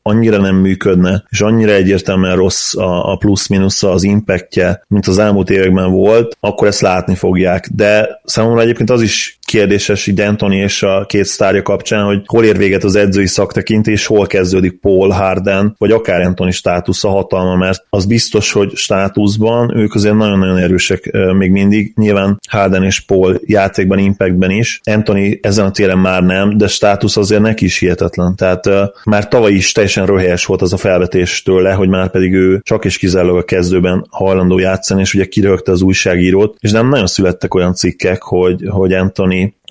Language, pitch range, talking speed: Hungarian, 95-100 Hz, 175 wpm